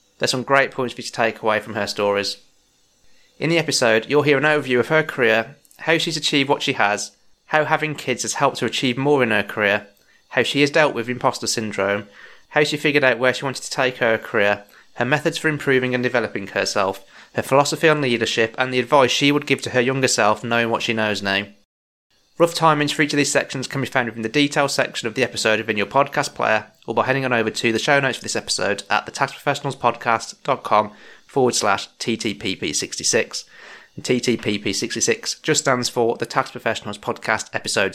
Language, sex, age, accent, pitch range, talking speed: English, male, 30-49, British, 110-140 Hz, 210 wpm